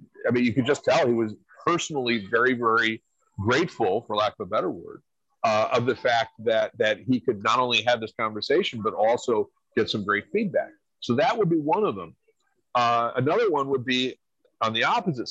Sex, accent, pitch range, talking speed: male, American, 110-170 Hz, 205 wpm